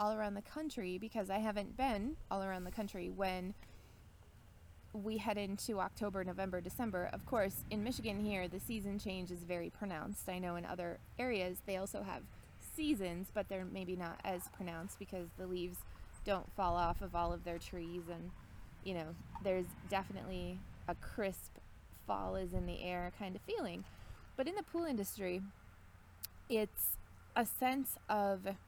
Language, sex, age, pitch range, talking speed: English, female, 20-39, 175-215 Hz, 165 wpm